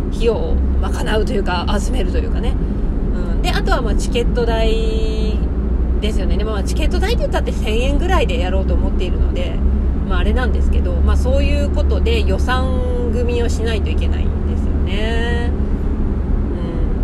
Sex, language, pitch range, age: female, Japanese, 70-75 Hz, 20-39